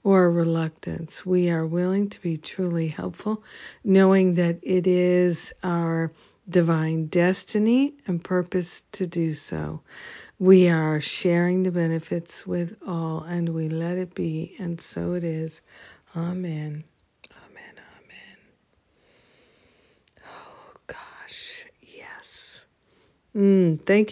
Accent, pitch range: American, 165-190 Hz